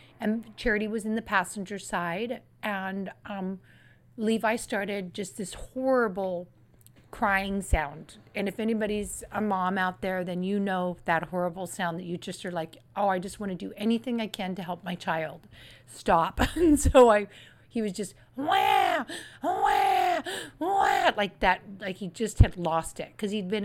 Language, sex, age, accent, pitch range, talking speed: English, female, 40-59, American, 185-220 Hz, 165 wpm